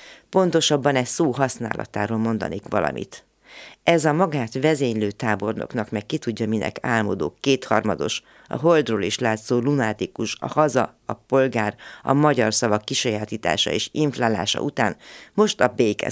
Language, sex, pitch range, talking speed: Hungarian, female, 105-135 Hz, 135 wpm